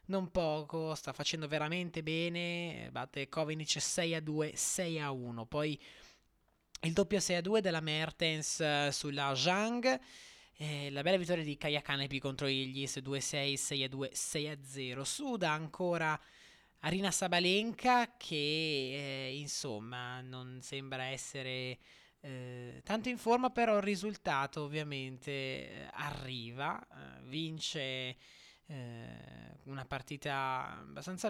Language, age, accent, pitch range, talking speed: Italian, 20-39, native, 135-170 Hz, 105 wpm